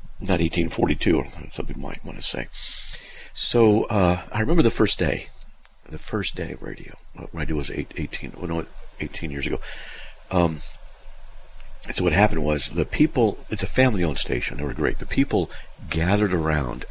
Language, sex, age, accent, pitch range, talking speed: English, male, 50-69, American, 80-105 Hz, 155 wpm